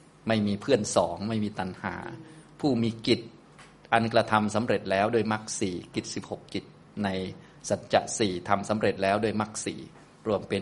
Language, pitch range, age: Thai, 100-115 Hz, 20-39